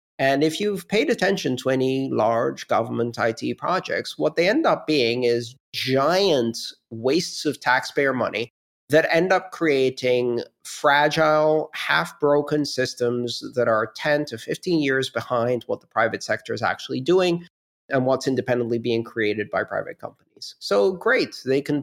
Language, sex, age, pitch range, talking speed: English, male, 40-59, 120-150 Hz, 150 wpm